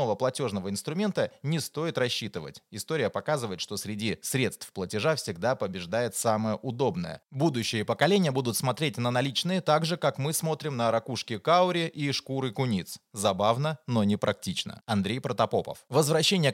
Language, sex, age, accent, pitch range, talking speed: Russian, male, 20-39, native, 105-150 Hz, 140 wpm